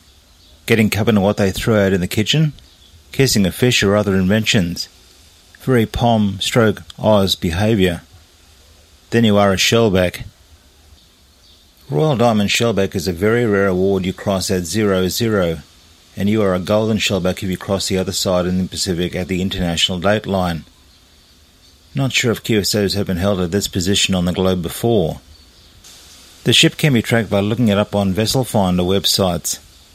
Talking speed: 170 wpm